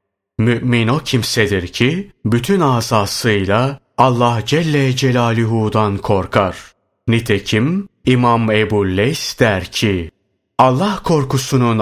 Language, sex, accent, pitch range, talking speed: Turkish, male, native, 105-135 Hz, 90 wpm